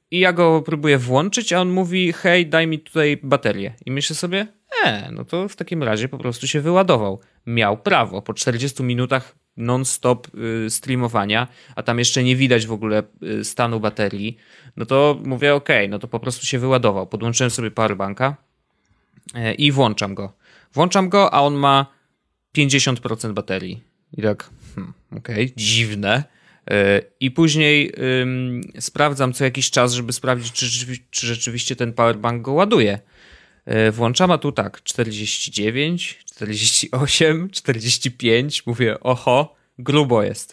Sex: male